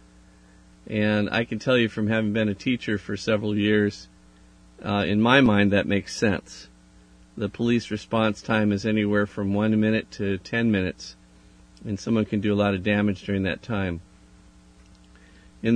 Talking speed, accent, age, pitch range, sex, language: 170 wpm, American, 50-69, 90-110 Hz, male, English